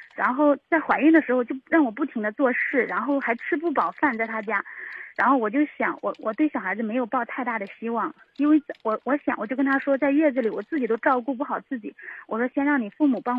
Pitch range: 230-290 Hz